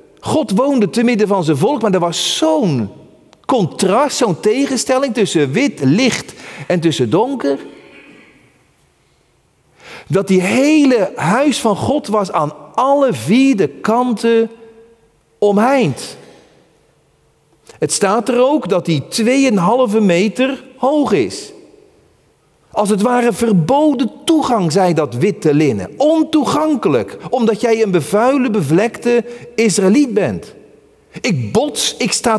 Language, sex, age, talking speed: Dutch, male, 40-59, 115 wpm